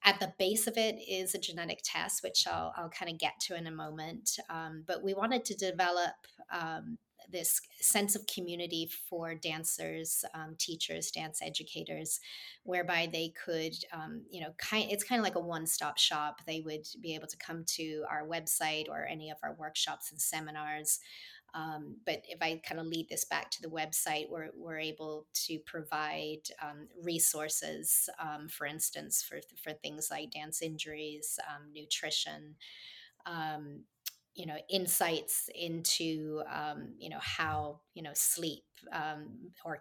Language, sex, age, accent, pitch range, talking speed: English, female, 30-49, American, 155-180 Hz, 165 wpm